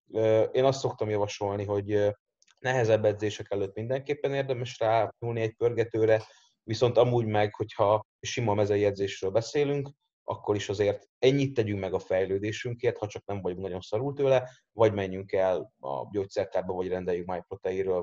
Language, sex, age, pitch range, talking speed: Hungarian, male, 30-49, 100-130 Hz, 145 wpm